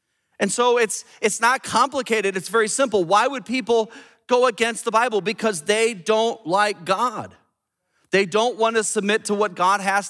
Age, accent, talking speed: 40-59, American, 180 wpm